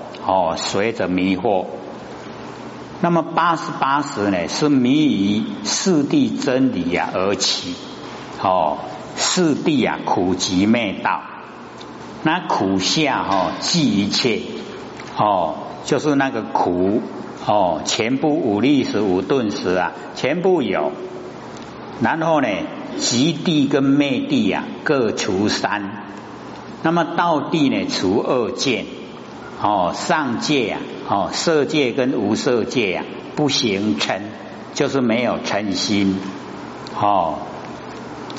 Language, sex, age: Chinese, male, 60-79